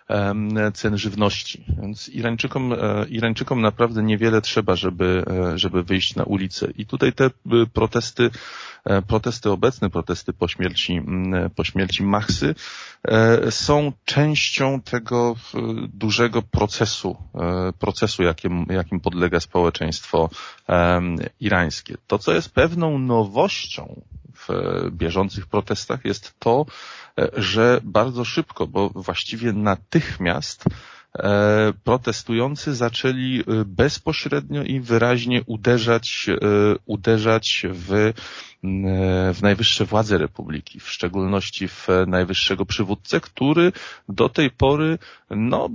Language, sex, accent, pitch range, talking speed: Polish, male, native, 90-115 Hz, 95 wpm